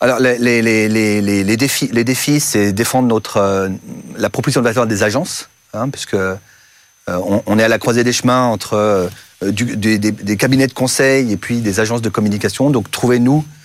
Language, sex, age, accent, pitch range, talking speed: French, male, 40-59, French, 105-130 Hz, 200 wpm